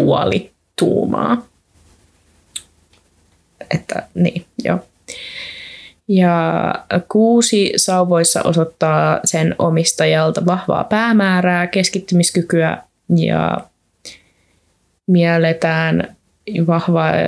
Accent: native